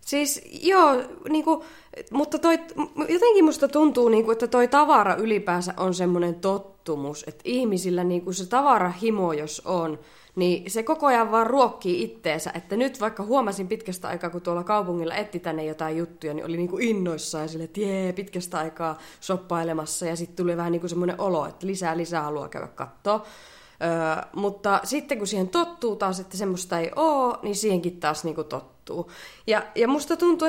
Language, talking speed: Finnish, 160 wpm